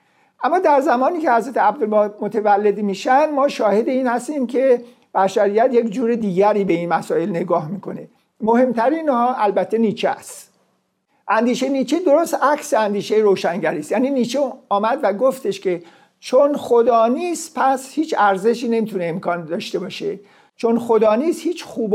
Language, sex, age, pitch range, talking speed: Persian, male, 50-69, 200-255 Hz, 150 wpm